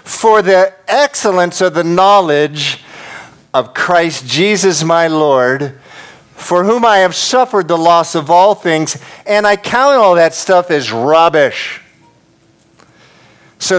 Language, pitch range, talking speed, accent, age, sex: English, 155-195 Hz, 130 wpm, American, 50-69, male